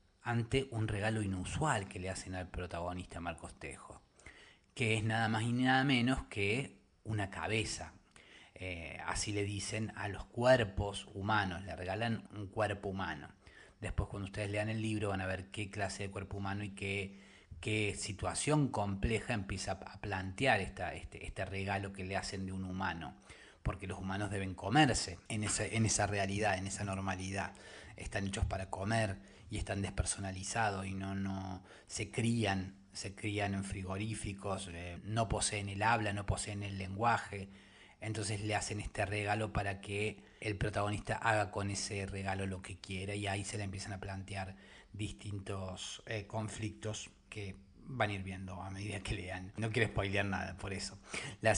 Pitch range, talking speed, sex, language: 95-110 Hz, 170 wpm, male, Spanish